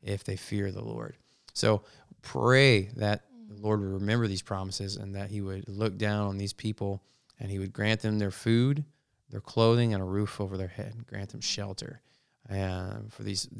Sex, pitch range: male, 100-120 Hz